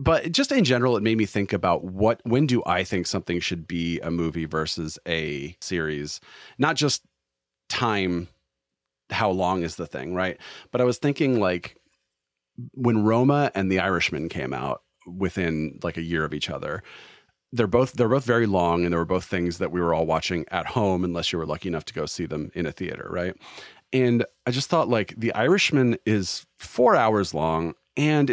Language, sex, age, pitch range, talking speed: English, male, 40-59, 90-115 Hz, 195 wpm